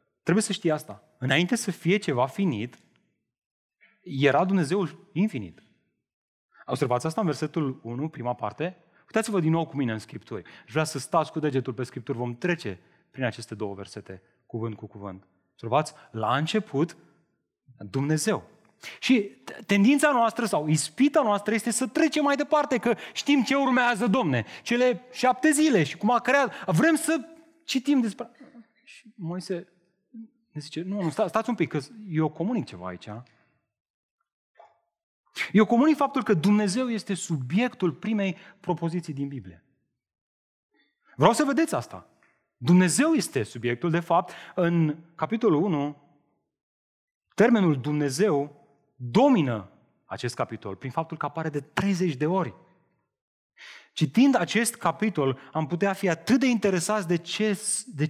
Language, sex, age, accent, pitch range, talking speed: Romanian, male, 30-49, native, 140-220 Hz, 140 wpm